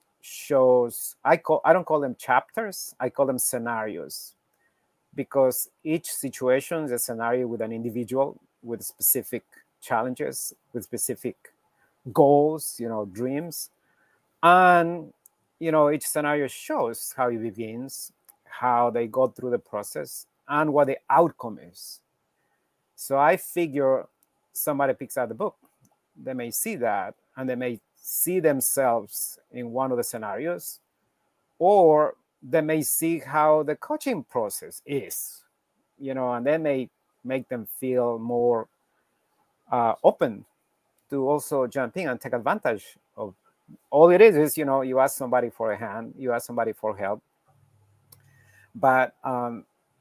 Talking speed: 145 wpm